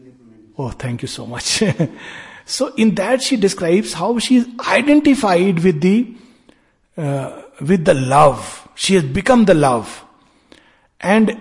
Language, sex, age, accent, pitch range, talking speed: Hindi, male, 60-79, native, 155-230 Hz, 135 wpm